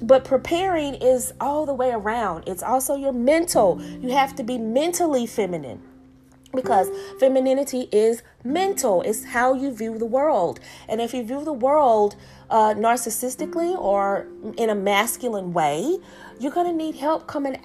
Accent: American